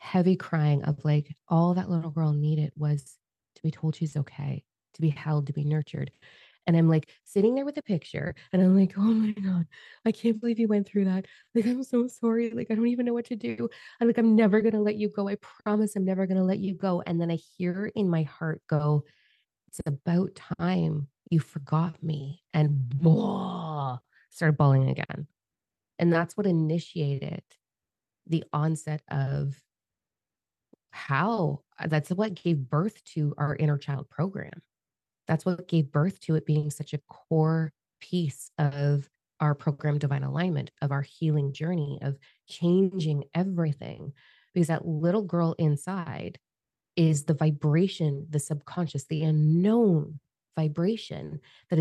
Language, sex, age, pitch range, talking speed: English, female, 20-39, 145-185 Hz, 170 wpm